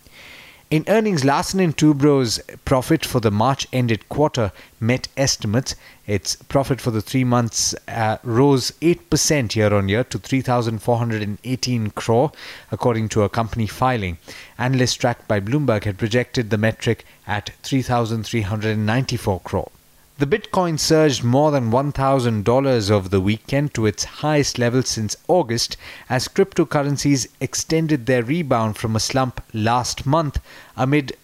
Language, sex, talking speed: English, male, 125 wpm